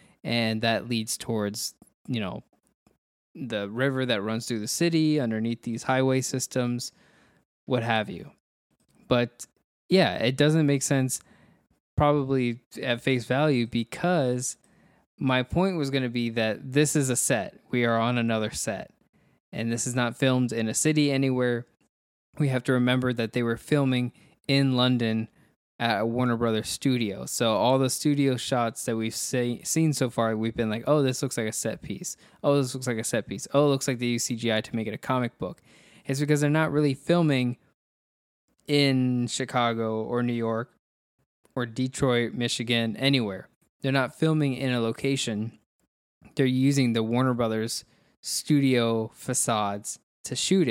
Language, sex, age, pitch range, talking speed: English, male, 20-39, 115-135 Hz, 170 wpm